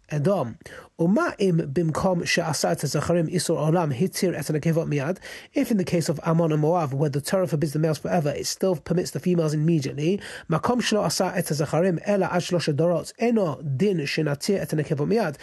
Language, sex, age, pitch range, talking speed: English, male, 30-49, 160-200 Hz, 85 wpm